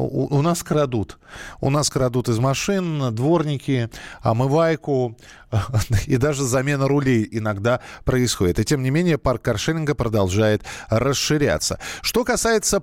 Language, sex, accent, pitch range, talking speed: Russian, male, native, 130-170 Hz, 125 wpm